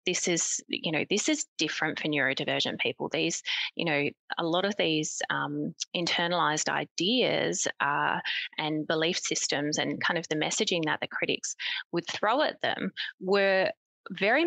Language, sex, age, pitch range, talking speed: English, female, 30-49, 155-185 Hz, 160 wpm